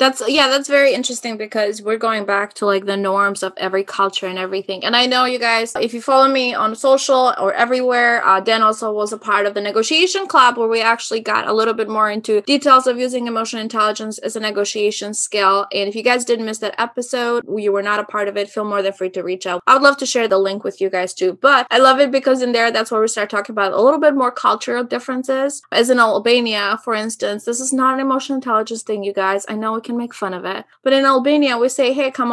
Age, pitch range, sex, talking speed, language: 20-39, 200-250 Hz, female, 260 wpm, English